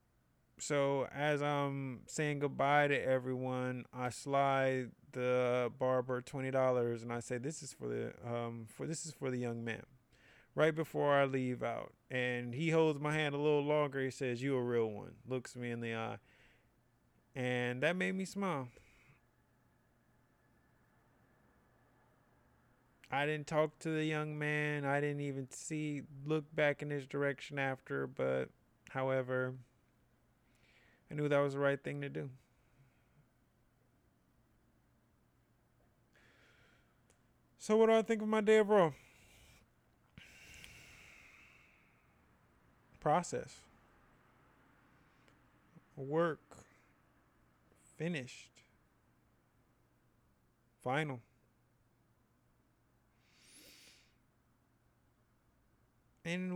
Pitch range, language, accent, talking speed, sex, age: 120-145 Hz, English, American, 105 wpm, male, 30-49